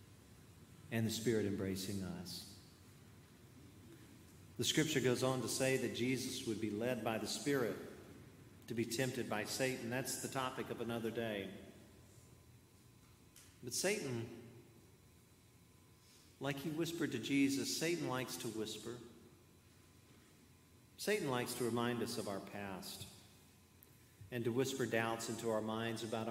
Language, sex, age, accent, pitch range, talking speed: English, male, 50-69, American, 105-125 Hz, 130 wpm